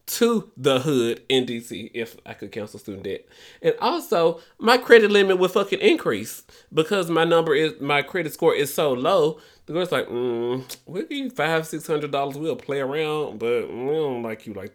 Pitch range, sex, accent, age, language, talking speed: 125-185 Hz, male, American, 20-39, English, 190 wpm